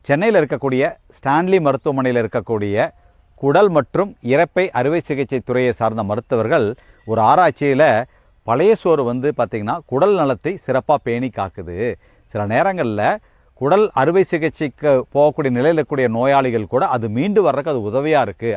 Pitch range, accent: 110-150 Hz, native